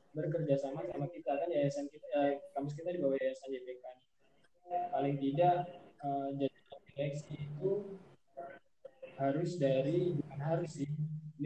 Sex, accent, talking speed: male, native, 135 wpm